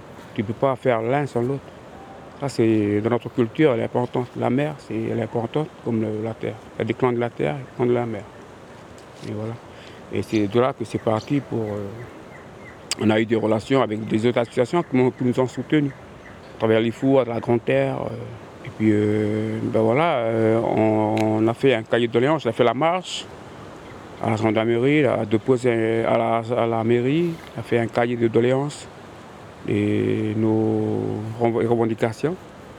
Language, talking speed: French, 200 wpm